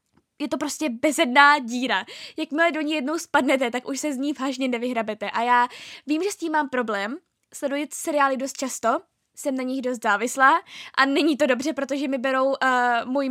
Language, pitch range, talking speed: Czech, 240-290 Hz, 195 wpm